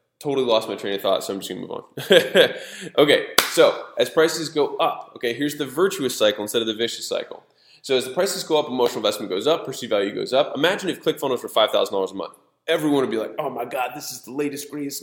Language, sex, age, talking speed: English, male, 20-39, 245 wpm